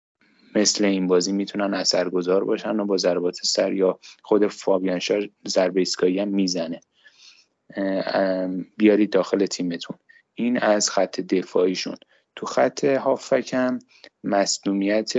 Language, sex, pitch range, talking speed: Persian, male, 95-105 Hz, 110 wpm